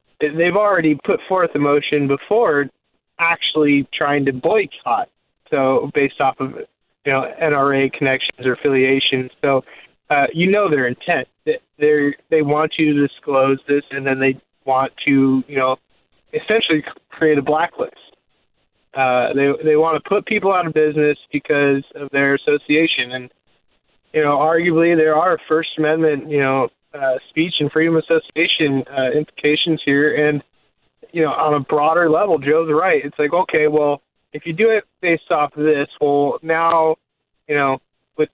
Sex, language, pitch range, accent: male, English, 140-160 Hz, American